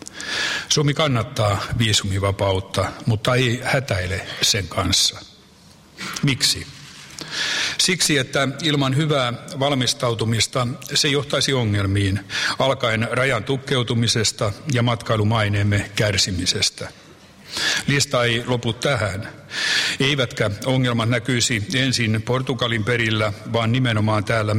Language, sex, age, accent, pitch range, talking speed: Finnish, male, 60-79, native, 110-135 Hz, 90 wpm